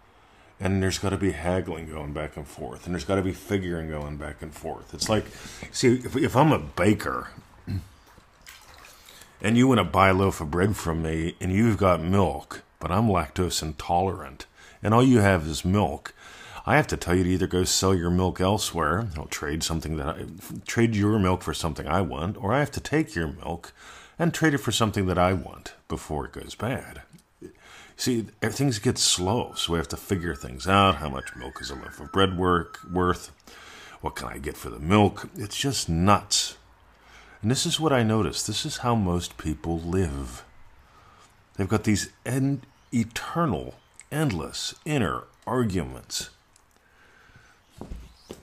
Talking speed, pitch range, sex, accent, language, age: 180 wpm, 80-110 Hz, male, American, English, 40-59